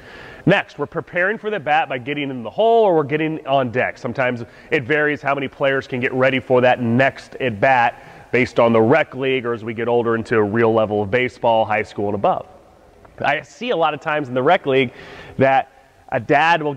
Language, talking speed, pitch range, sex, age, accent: English, 230 wpm, 125-165 Hz, male, 30-49, American